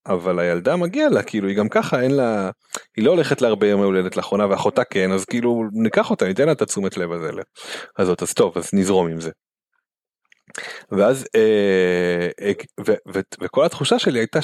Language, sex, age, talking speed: Hebrew, male, 30-49, 195 wpm